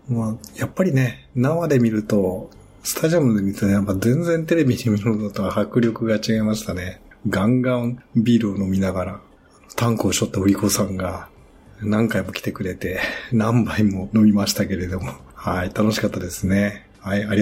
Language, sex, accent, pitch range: Japanese, male, native, 100-125 Hz